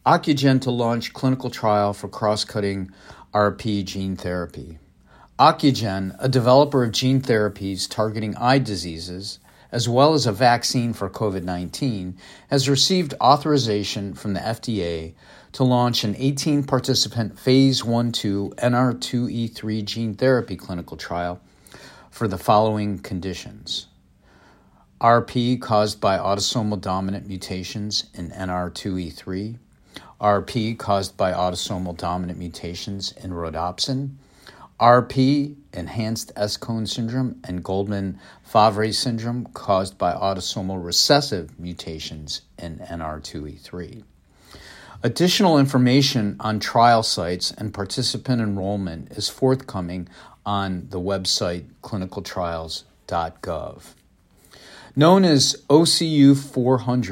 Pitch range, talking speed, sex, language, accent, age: 95-125 Hz, 100 wpm, male, English, American, 50-69